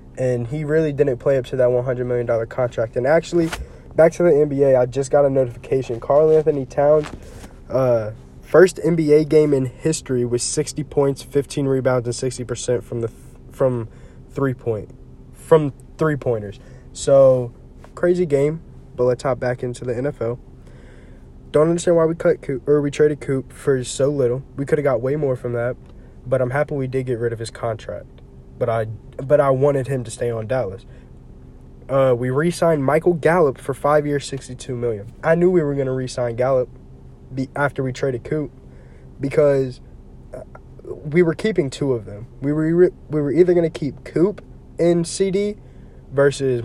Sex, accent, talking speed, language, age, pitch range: male, American, 180 wpm, English, 20-39, 120-145 Hz